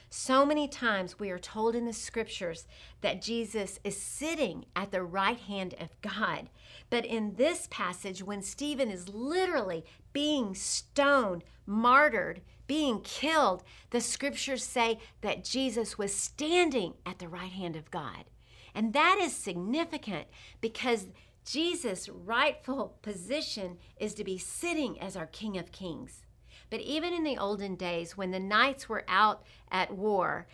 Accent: American